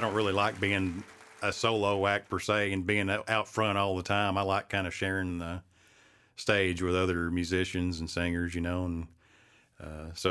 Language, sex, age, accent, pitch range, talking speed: English, male, 40-59, American, 90-100 Hz, 200 wpm